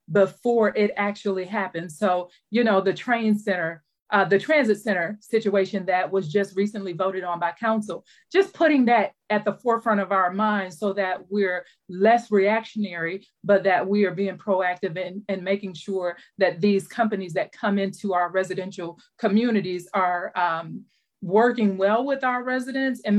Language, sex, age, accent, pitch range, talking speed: English, female, 40-59, American, 185-215 Hz, 170 wpm